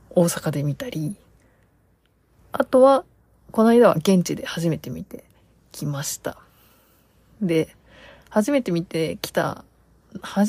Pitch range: 165-240 Hz